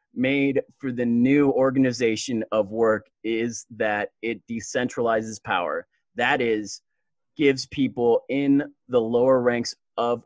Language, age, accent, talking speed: English, 30-49, American, 125 wpm